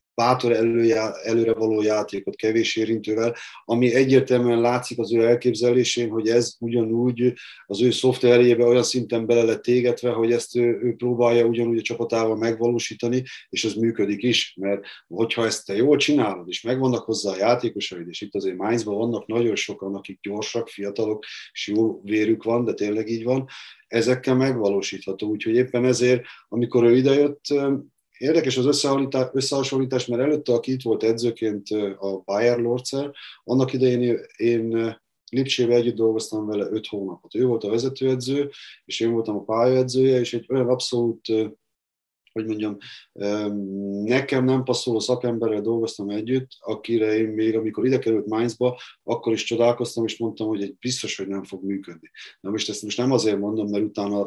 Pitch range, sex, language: 110-125 Hz, male, Hungarian